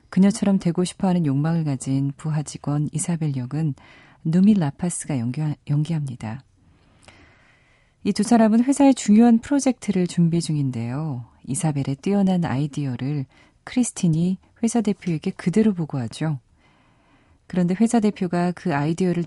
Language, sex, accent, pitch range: Korean, female, native, 135-190 Hz